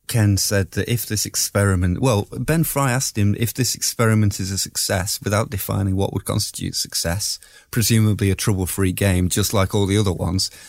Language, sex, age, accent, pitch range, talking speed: English, male, 30-49, British, 95-115 Hz, 185 wpm